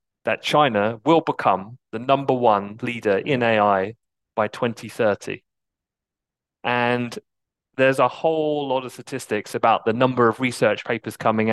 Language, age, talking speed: English, 30-49, 135 wpm